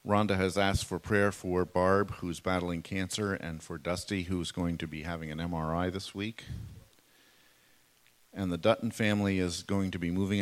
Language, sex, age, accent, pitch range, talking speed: English, male, 50-69, American, 85-100 Hz, 180 wpm